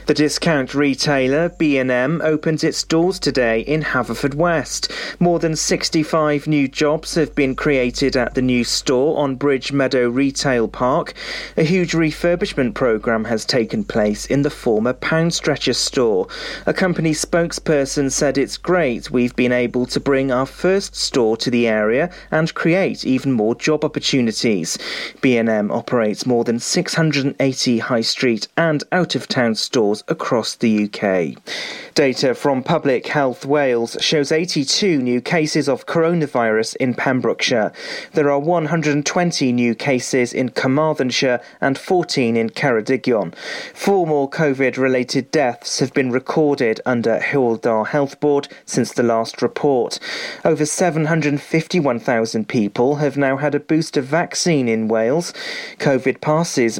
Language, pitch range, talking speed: English, 125-160 Hz, 135 wpm